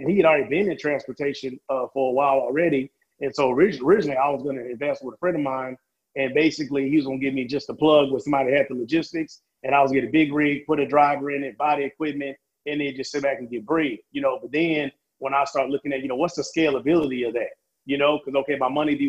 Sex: male